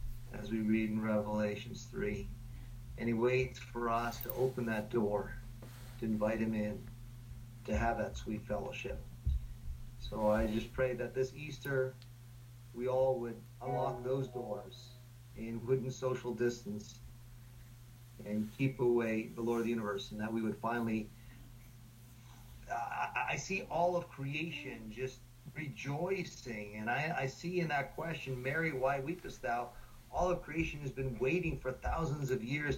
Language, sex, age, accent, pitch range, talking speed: English, male, 40-59, American, 115-130 Hz, 150 wpm